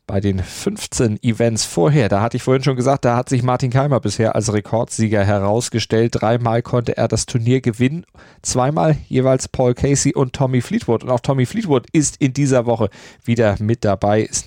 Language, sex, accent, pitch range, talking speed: German, male, German, 105-130 Hz, 185 wpm